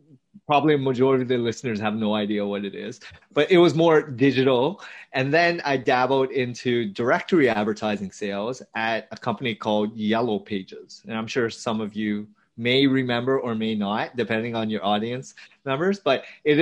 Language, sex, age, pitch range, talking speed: English, male, 30-49, 115-145 Hz, 175 wpm